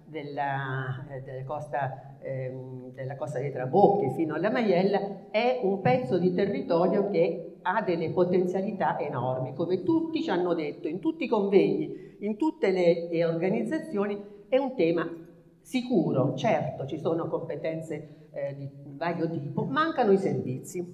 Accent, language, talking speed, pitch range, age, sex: native, Italian, 135 wpm, 160-205 Hz, 50-69, female